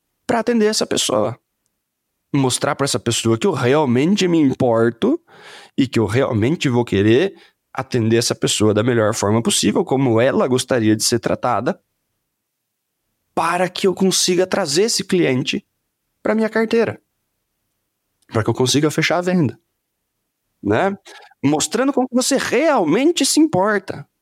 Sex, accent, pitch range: male, Brazilian, 115-185 Hz